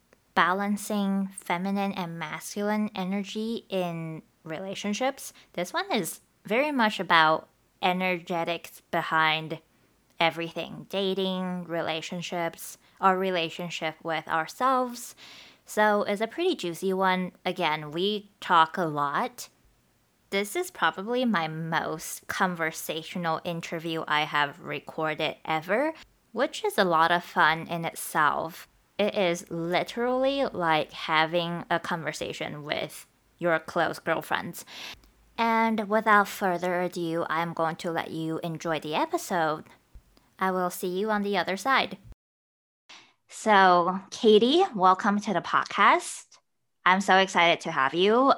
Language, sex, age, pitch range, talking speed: English, female, 20-39, 160-205 Hz, 120 wpm